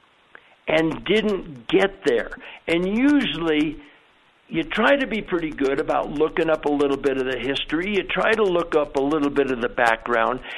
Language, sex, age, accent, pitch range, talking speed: English, male, 60-79, American, 135-190 Hz, 180 wpm